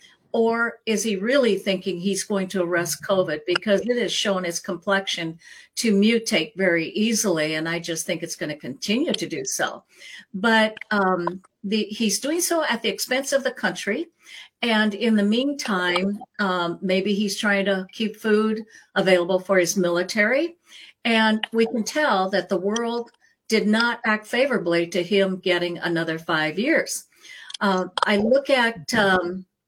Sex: female